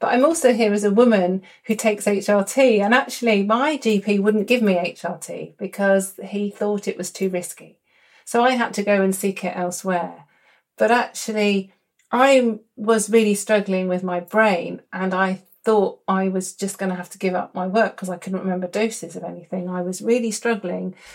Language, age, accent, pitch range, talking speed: English, 40-59, British, 185-235 Hz, 195 wpm